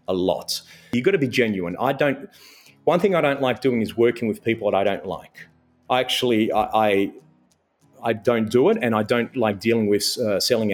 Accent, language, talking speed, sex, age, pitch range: Australian, English, 220 wpm, male, 30-49, 105-130 Hz